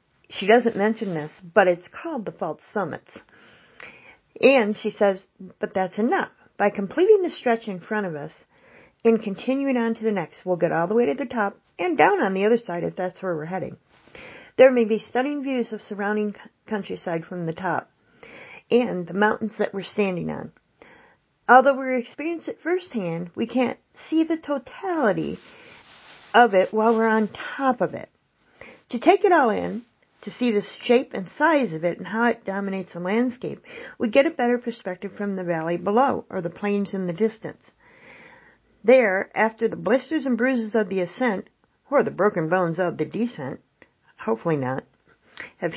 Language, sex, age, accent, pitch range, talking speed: English, female, 40-59, American, 185-250 Hz, 180 wpm